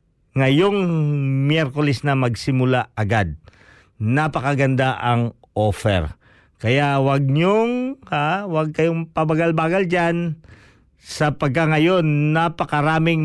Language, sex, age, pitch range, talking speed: Filipino, male, 50-69, 120-155 Hz, 80 wpm